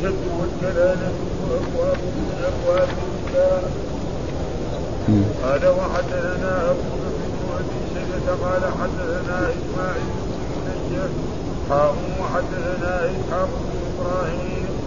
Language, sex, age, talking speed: Arabic, male, 50-69, 50 wpm